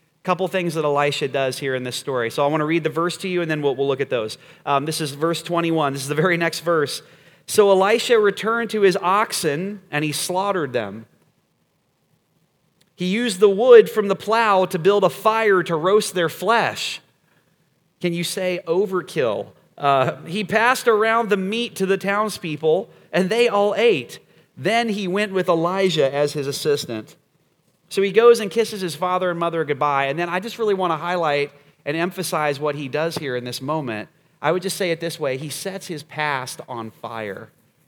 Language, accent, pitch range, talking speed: English, American, 150-195 Hz, 200 wpm